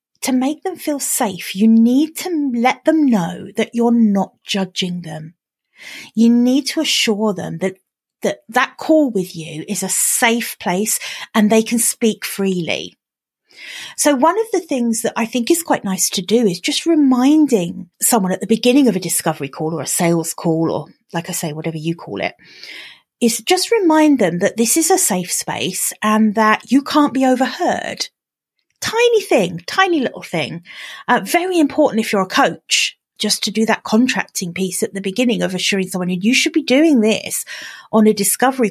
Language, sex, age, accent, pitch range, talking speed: English, female, 30-49, British, 185-280 Hz, 190 wpm